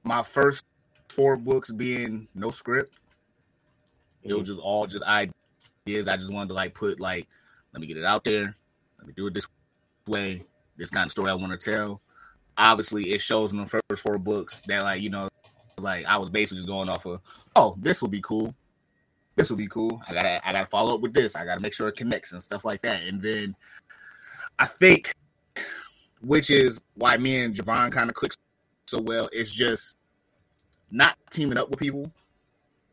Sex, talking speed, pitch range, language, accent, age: male, 200 wpm, 95-120 Hz, English, American, 20-39